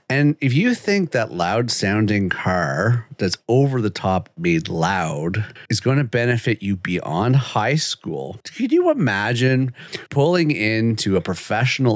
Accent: American